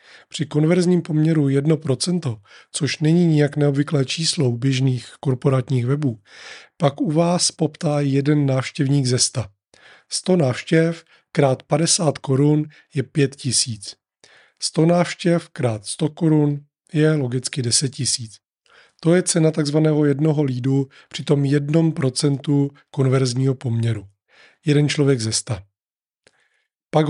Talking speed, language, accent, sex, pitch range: 120 wpm, Czech, native, male, 130-160 Hz